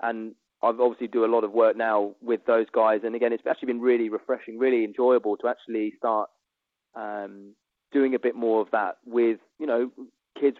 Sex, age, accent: male, 20-39, British